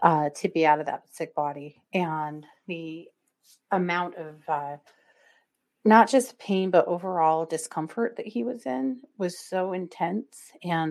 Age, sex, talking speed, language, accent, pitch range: 30-49, female, 150 wpm, English, American, 170-230 Hz